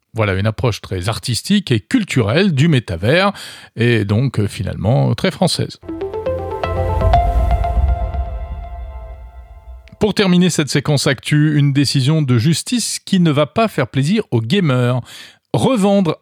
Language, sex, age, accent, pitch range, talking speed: French, male, 40-59, French, 115-175 Hz, 120 wpm